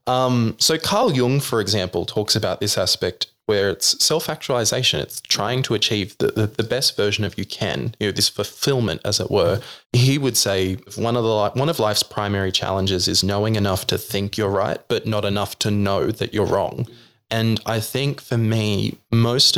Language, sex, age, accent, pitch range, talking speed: English, male, 20-39, Australian, 100-120 Hz, 200 wpm